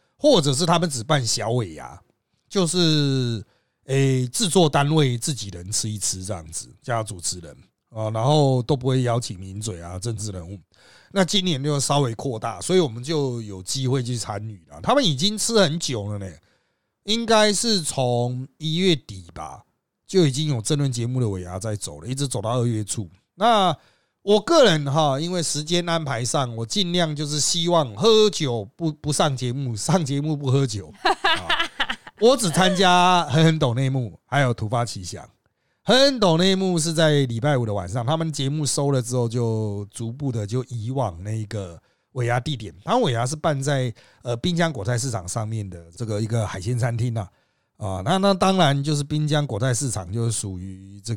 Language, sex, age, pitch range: Chinese, male, 30-49, 110-160 Hz